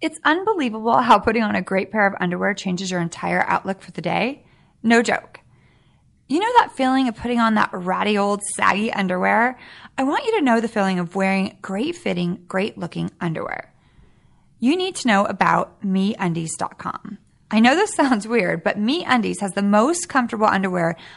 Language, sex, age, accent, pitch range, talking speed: English, female, 30-49, American, 200-265 Hz, 180 wpm